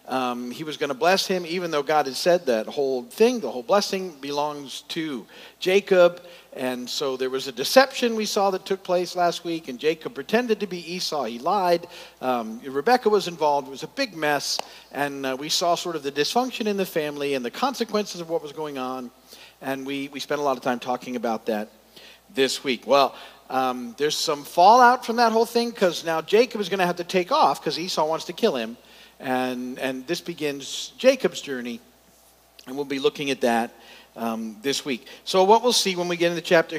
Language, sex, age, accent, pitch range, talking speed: English, male, 50-69, American, 130-180 Hz, 215 wpm